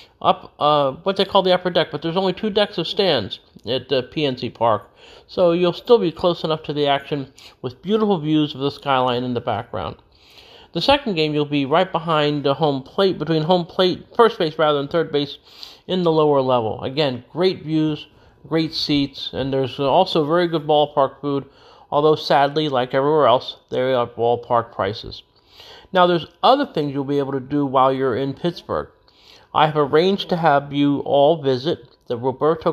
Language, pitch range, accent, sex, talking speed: English, 135-170 Hz, American, male, 190 wpm